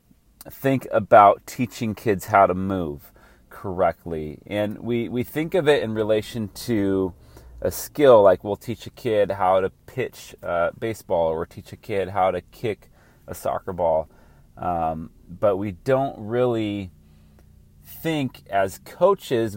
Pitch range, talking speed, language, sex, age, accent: 90-110 Hz, 145 wpm, English, male, 30-49, American